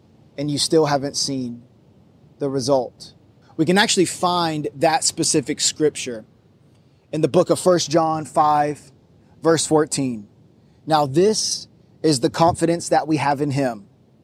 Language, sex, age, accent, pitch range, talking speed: English, male, 30-49, American, 145-175 Hz, 140 wpm